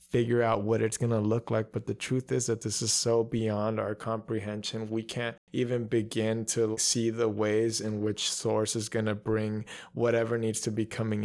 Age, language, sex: 20-39, English, male